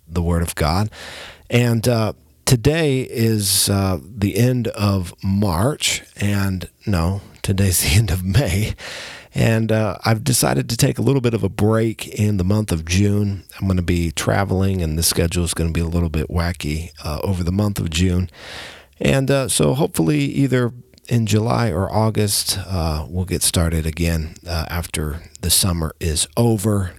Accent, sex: American, male